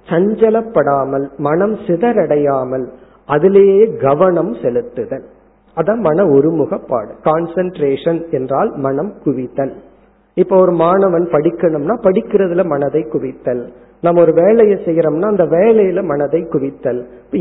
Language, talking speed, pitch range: Tamil, 105 wpm, 160-220 Hz